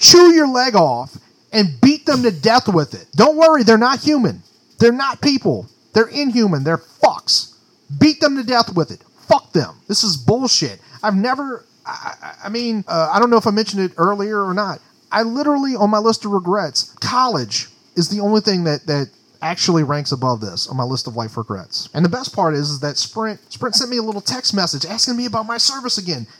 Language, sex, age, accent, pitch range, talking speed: English, male, 30-49, American, 155-245 Hz, 215 wpm